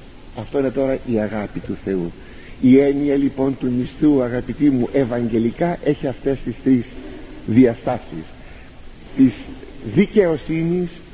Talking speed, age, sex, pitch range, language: 120 wpm, 50-69, male, 115-180 Hz, Greek